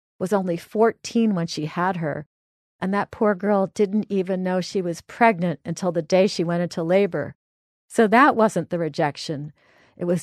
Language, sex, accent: English, female, American